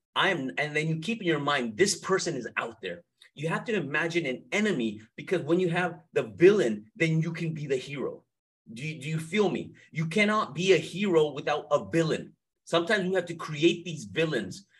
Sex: male